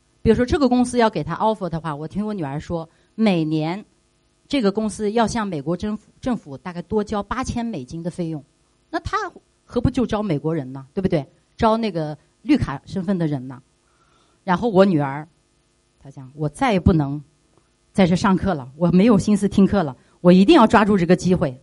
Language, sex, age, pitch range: Chinese, female, 30-49, 155-200 Hz